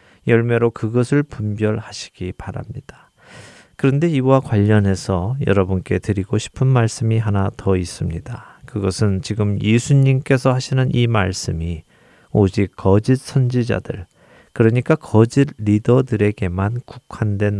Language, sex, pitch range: Korean, male, 100-130 Hz